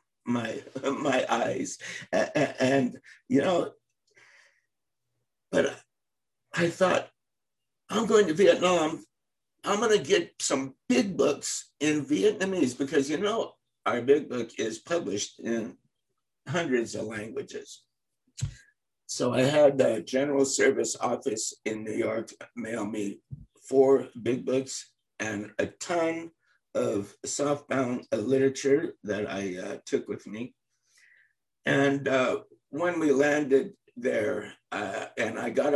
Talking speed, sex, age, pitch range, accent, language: 120 wpm, male, 60-79, 130-215 Hz, American, English